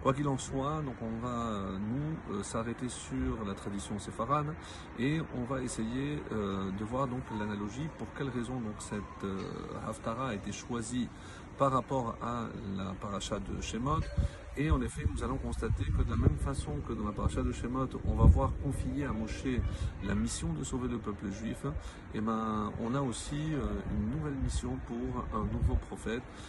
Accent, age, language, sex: French, 50-69, French, male